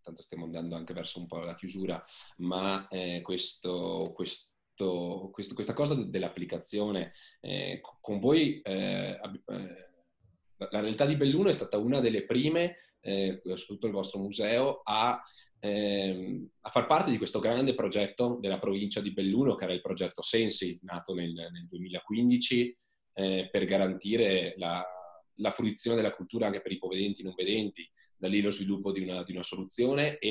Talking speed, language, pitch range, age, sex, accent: 165 wpm, Italian, 95-125 Hz, 20-39, male, native